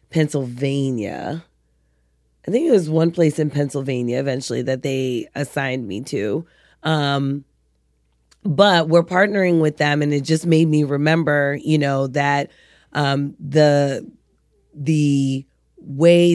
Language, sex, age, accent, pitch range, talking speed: English, female, 30-49, American, 135-155 Hz, 125 wpm